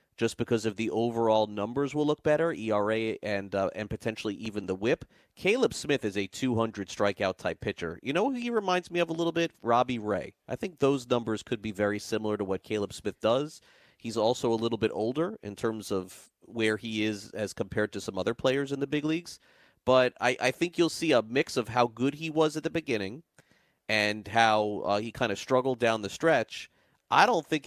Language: English